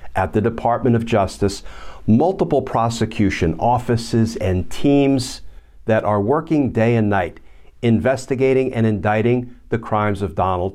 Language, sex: English, male